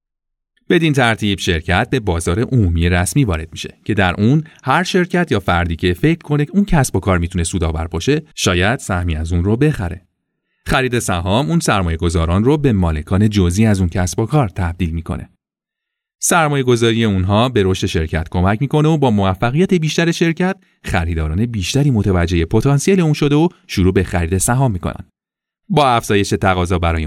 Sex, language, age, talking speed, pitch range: male, Persian, 30-49, 165 wpm, 90-140 Hz